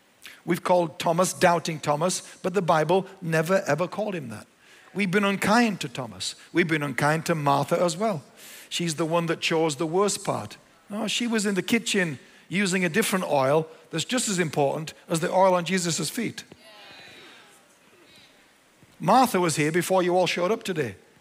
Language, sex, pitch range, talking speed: English, male, 160-215 Hz, 175 wpm